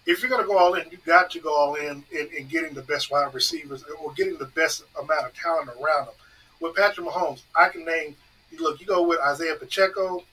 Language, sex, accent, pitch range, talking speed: English, male, American, 150-190 Hz, 230 wpm